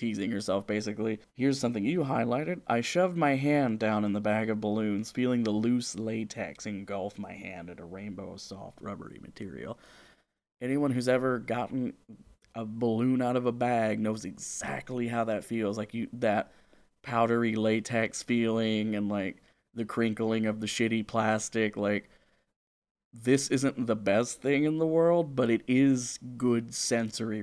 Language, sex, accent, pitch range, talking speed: English, male, American, 110-130 Hz, 160 wpm